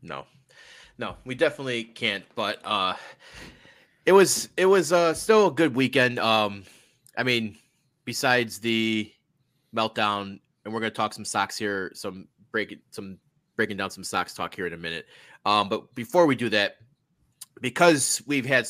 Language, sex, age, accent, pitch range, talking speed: English, male, 30-49, American, 110-140 Hz, 160 wpm